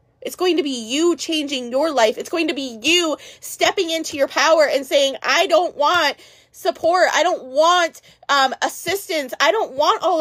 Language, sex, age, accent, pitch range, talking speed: English, female, 20-39, American, 245-335 Hz, 190 wpm